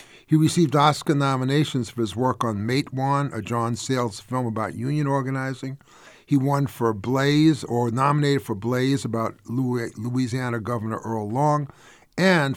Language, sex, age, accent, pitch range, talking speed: English, male, 50-69, American, 115-140 Hz, 150 wpm